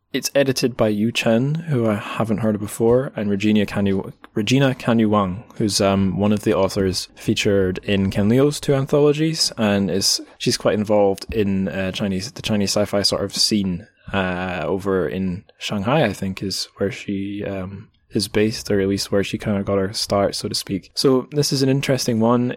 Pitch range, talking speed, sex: 100-120 Hz, 195 wpm, male